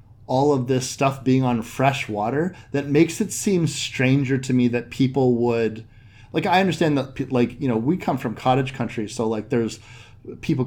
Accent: American